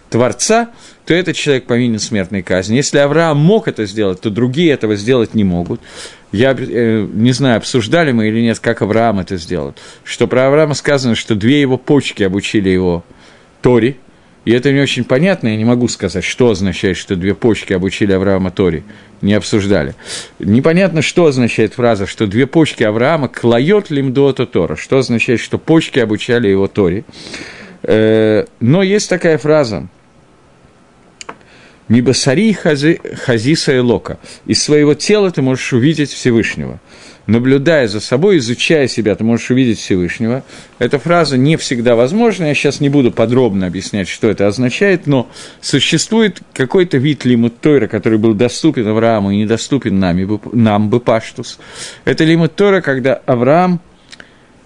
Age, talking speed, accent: 50-69, 145 wpm, native